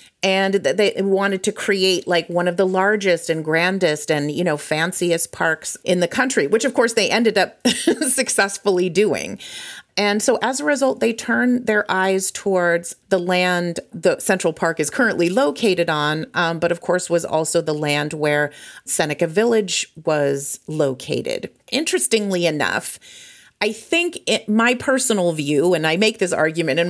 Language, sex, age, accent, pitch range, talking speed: English, female, 30-49, American, 155-205 Hz, 165 wpm